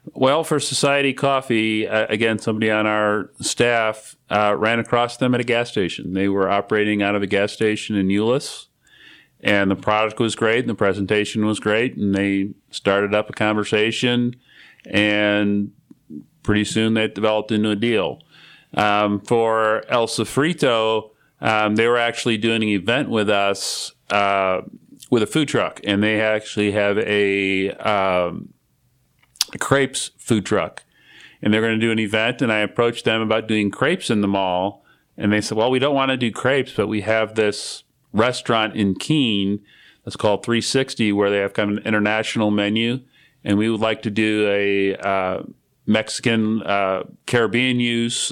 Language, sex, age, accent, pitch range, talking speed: English, male, 40-59, American, 105-115 Hz, 165 wpm